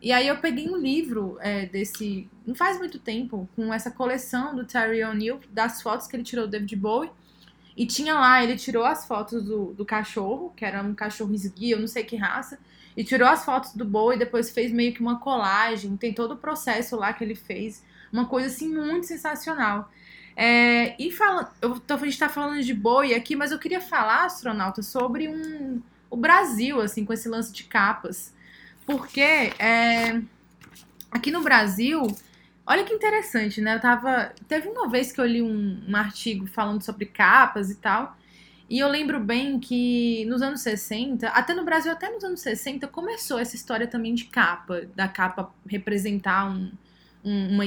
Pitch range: 215-270 Hz